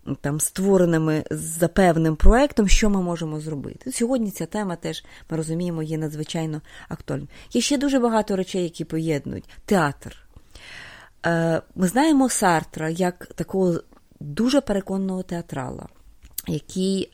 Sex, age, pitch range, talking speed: female, 30-49, 160-210 Hz, 125 wpm